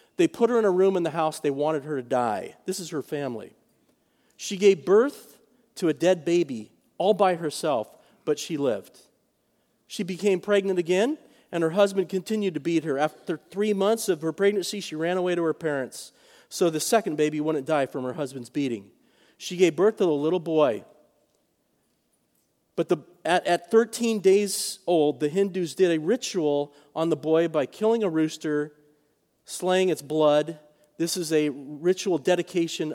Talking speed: 175 wpm